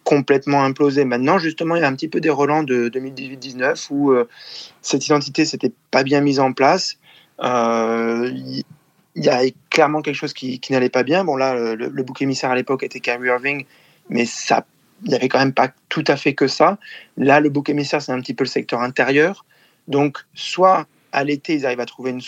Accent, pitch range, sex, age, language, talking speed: French, 125-145 Hz, male, 20-39, French, 215 wpm